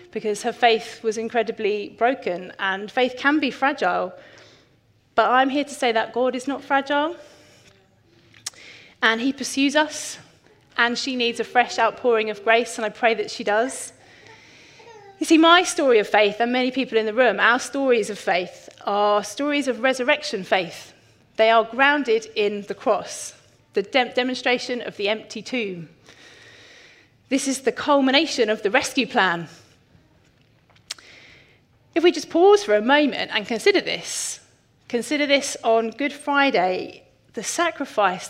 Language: English